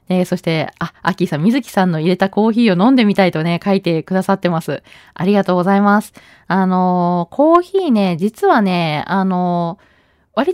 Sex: female